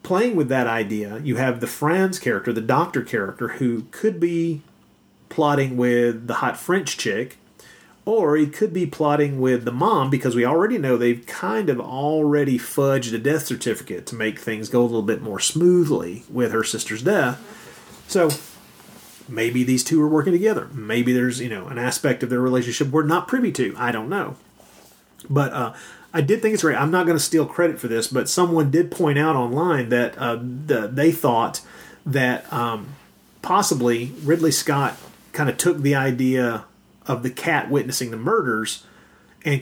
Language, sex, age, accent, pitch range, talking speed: English, male, 30-49, American, 120-150 Hz, 180 wpm